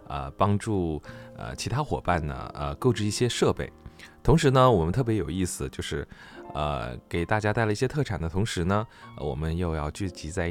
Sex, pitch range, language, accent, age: male, 80-110 Hz, Chinese, native, 20-39